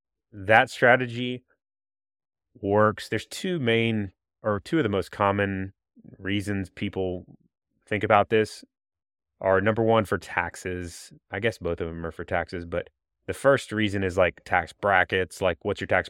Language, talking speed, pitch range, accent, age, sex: English, 155 wpm, 90-110 Hz, American, 20-39, male